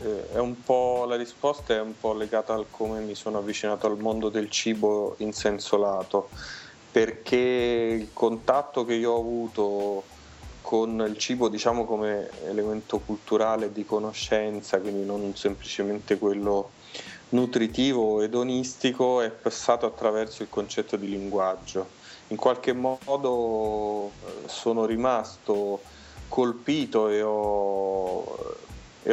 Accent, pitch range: native, 105-115 Hz